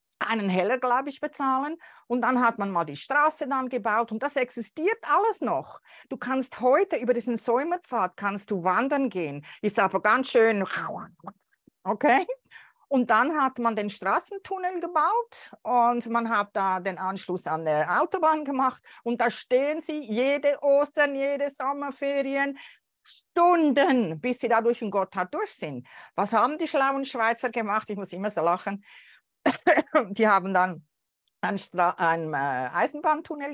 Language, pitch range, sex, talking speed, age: German, 205-280 Hz, female, 155 wpm, 40-59